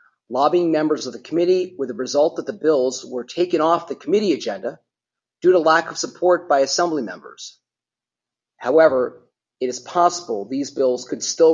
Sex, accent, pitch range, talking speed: male, American, 130-175 Hz, 170 wpm